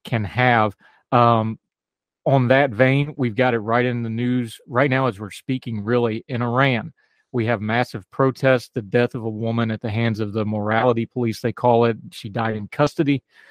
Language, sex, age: English, male, 30-49